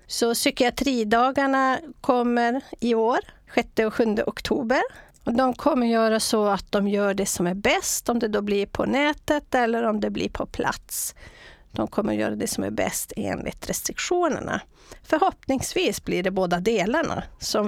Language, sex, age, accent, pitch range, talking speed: English, female, 40-59, Swedish, 200-265 Hz, 165 wpm